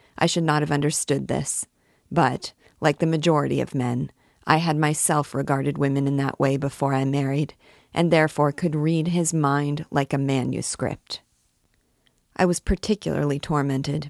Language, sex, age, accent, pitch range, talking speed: English, female, 40-59, American, 140-160 Hz, 155 wpm